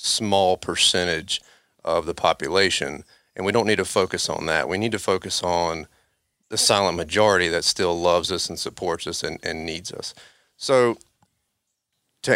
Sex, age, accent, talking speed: male, 30-49, American, 165 wpm